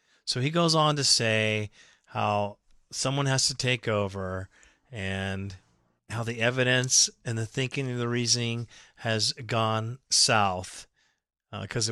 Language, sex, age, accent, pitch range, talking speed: English, male, 40-59, American, 110-125 Hz, 135 wpm